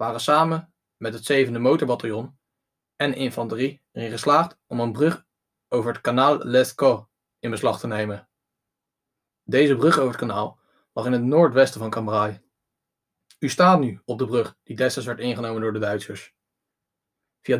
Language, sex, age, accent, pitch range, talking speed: Dutch, male, 20-39, Dutch, 120-150 Hz, 155 wpm